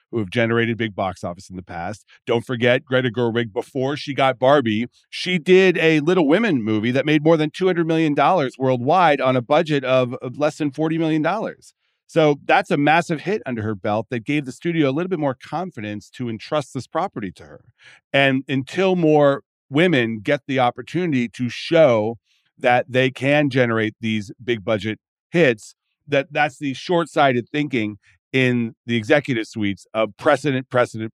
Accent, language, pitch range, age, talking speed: American, English, 115-150 Hz, 40-59, 175 wpm